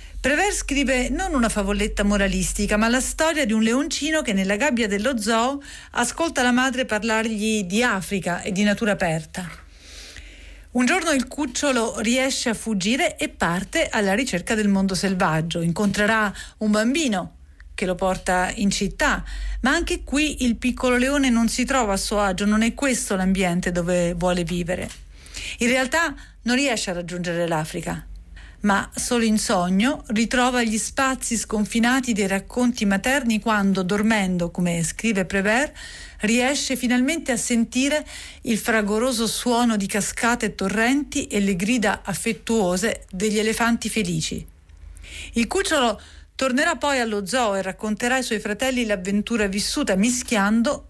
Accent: native